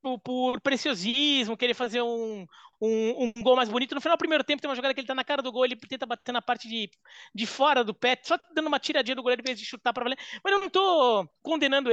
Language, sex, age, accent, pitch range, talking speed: Portuguese, male, 20-39, Brazilian, 225-285 Hz, 255 wpm